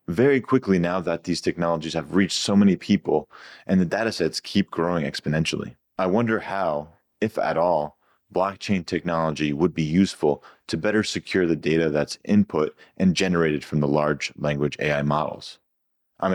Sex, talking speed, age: male, 160 wpm, 30-49